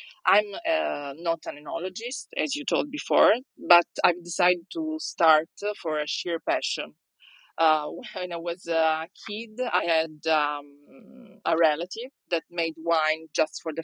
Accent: Italian